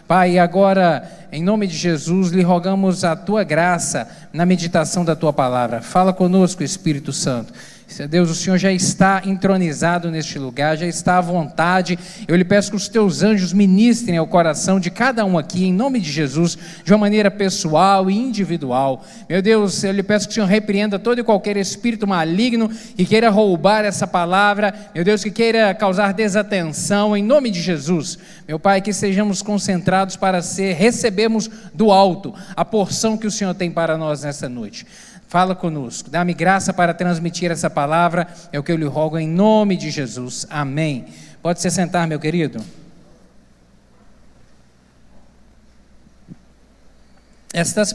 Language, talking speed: Portuguese, 165 wpm